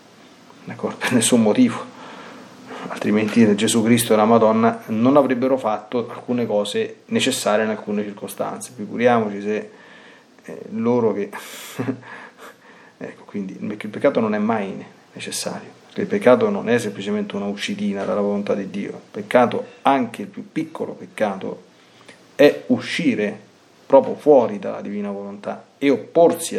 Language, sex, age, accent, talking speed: Italian, male, 30-49, native, 130 wpm